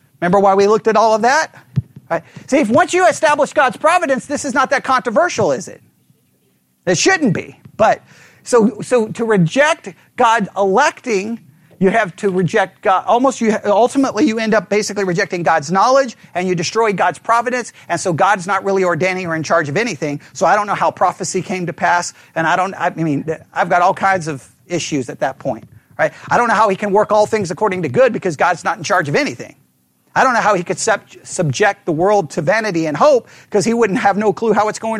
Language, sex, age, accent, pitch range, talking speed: English, male, 40-59, American, 175-245 Hz, 225 wpm